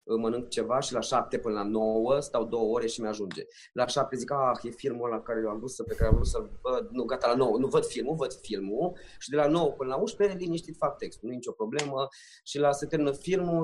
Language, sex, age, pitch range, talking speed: Romanian, male, 20-39, 130-190 Hz, 240 wpm